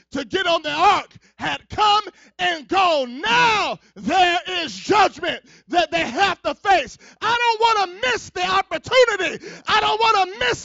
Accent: American